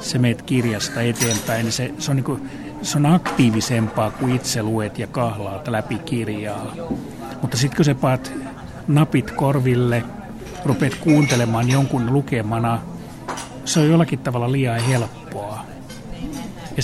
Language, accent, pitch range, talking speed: Finnish, native, 120-145 Hz, 130 wpm